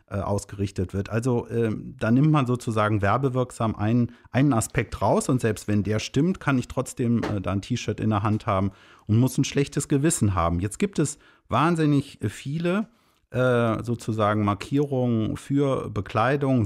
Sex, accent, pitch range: male, German, 100-125 Hz